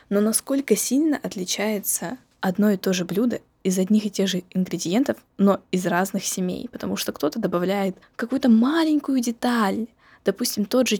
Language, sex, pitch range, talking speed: Russian, female, 190-240 Hz, 160 wpm